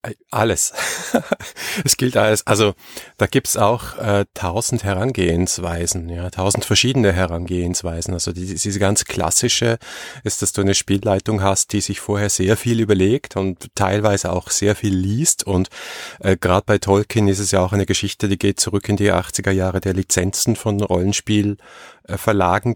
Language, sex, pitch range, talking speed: German, male, 95-110 Hz, 160 wpm